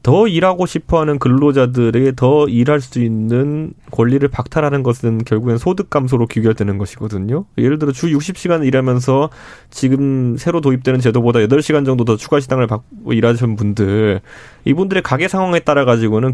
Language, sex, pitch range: Korean, male, 120-165 Hz